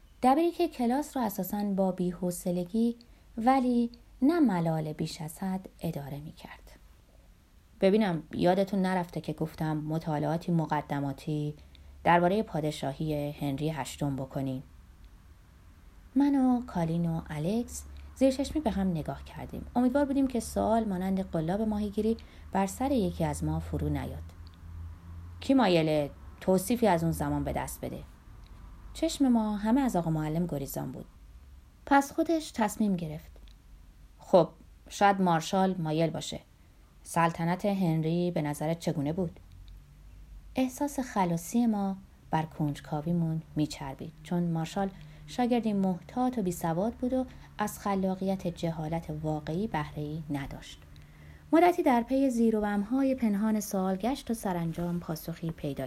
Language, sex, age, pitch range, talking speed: Persian, female, 30-49, 145-215 Hz, 125 wpm